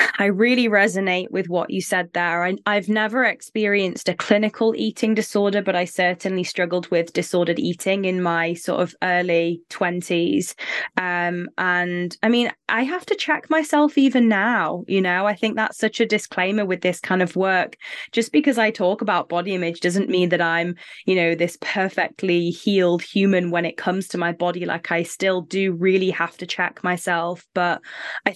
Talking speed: 180 wpm